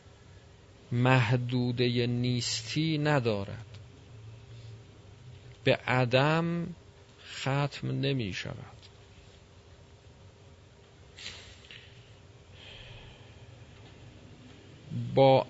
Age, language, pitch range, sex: 40-59, Persian, 105-130 Hz, male